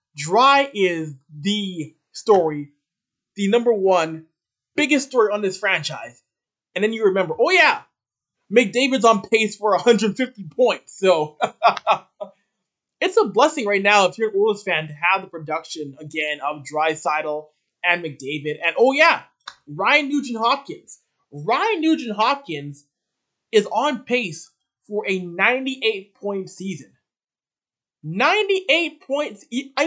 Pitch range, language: 160-240 Hz, English